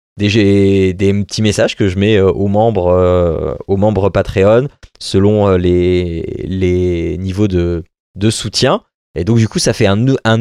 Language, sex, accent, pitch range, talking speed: French, male, French, 95-125 Hz, 165 wpm